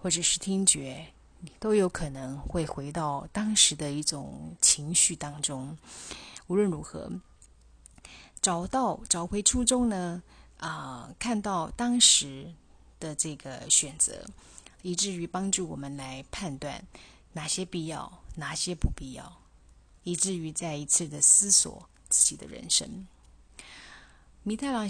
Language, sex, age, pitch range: Chinese, female, 30-49, 140-180 Hz